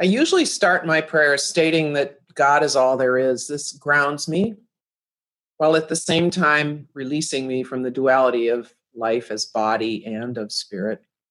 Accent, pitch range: American, 125-165 Hz